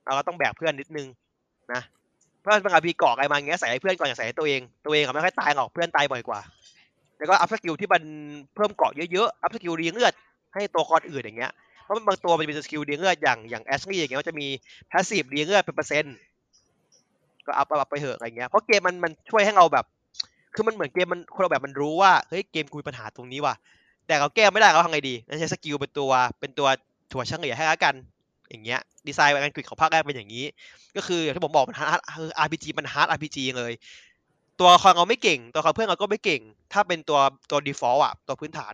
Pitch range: 140-180 Hz